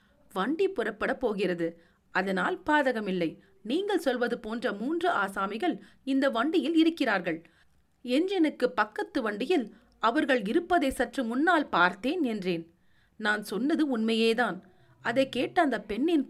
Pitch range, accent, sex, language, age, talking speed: 195-290 Hz, native, female, Tamil, 40-59, 115 wpm